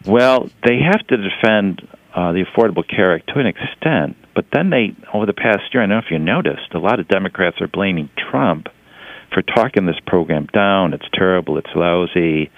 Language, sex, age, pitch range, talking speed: English, male, 50-69, 80-100 Hz, 200 wpm